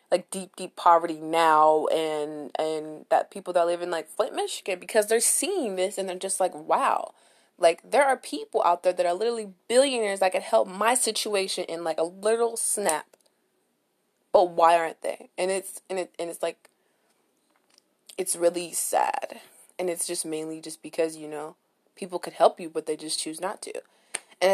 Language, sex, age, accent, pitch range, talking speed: English, female, 20-39, American, 170-225 Hz, 190 wpm